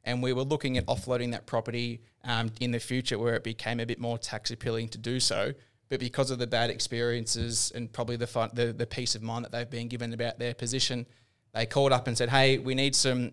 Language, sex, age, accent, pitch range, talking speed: English, male, 20-39, Australian, 115-125 Hz, 245 wpm